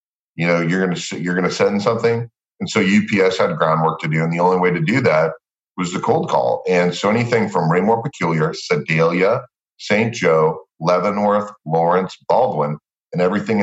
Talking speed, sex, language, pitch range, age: 180 wpm, male, English, 80-95 Hz, 40-59